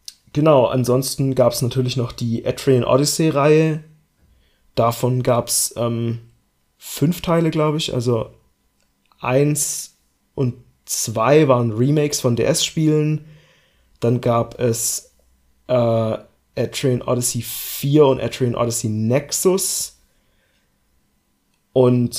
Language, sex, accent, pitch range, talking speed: German, male, German, 120-135 Hz, 100 wpm